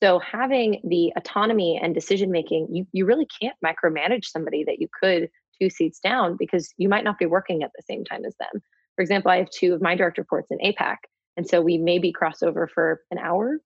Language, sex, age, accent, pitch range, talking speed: English, female, 20-39, American, 165-200 Hz, 220 wpm